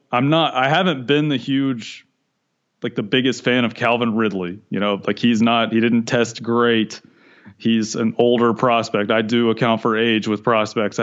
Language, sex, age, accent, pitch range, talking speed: English, male, 30-49, American, 110-120 Hz, 185 wpm